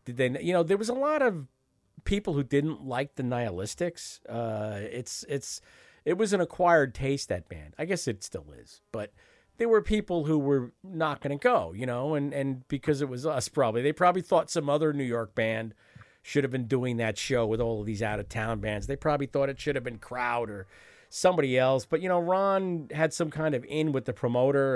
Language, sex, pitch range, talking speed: English, male, 120-160 Hz, 230 wpm